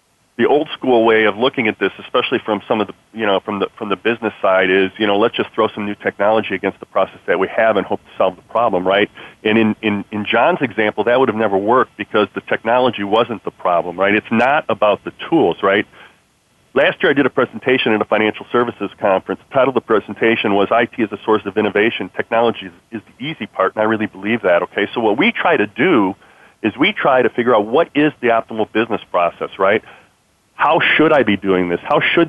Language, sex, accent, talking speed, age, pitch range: English, male, American, 240 wpm, 40-59, 100-115 Hz